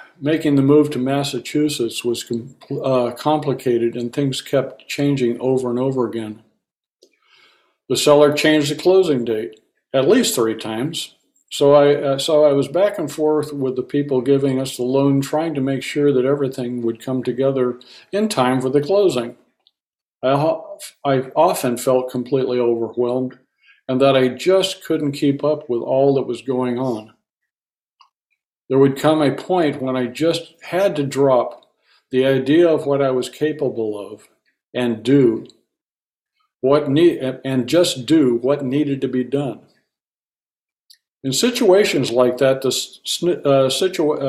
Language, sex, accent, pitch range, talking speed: English, male, American, 125-150 Hz, 155 wpm